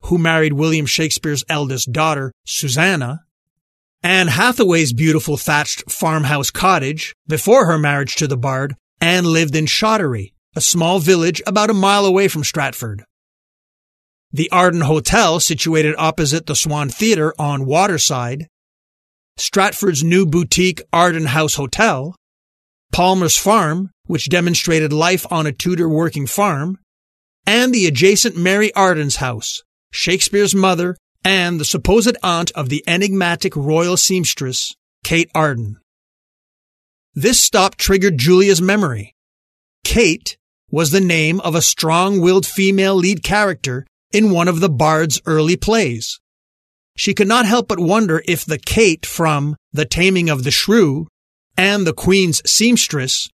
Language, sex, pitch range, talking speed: English, male, 145-185 Hz, 135 wpm